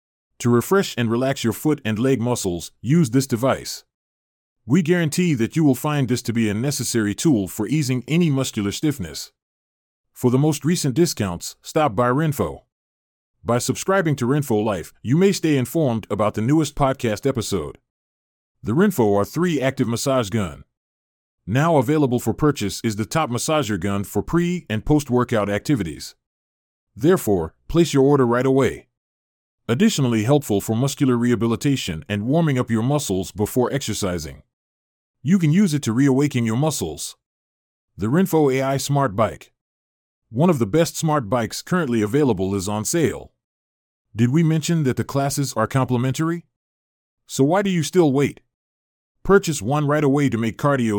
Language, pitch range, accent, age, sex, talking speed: English, 100-145 Hz, American, 30-49, male, 160 wpm